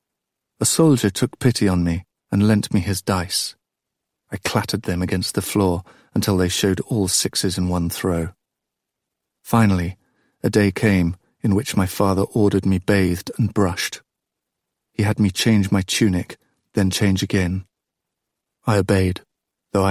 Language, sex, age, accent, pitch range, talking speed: English, male, 40-59, British, 90-105 Hz, 150 wpm